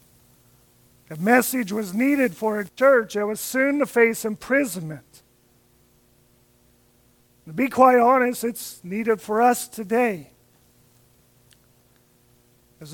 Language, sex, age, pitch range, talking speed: English, male, 50-69, 170-240 Hz, 105 wpm